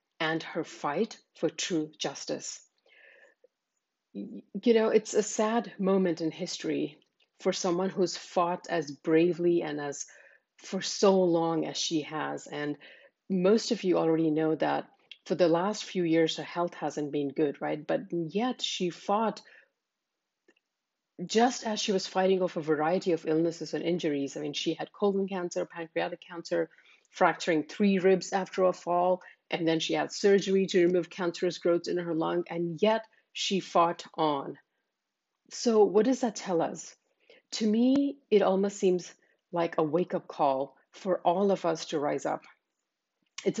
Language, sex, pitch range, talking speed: English, female, 165-205 Hz, 160 wpm